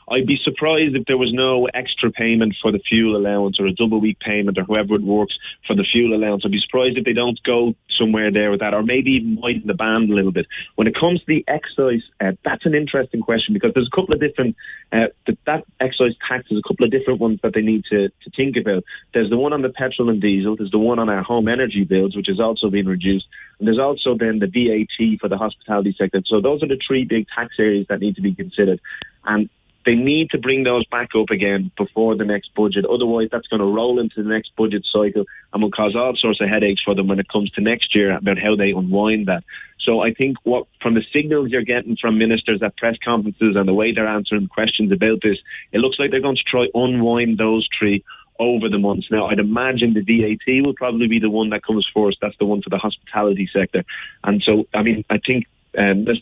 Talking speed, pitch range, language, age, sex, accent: 245 wpm, 105-120 Hz, English, 30-49, male, British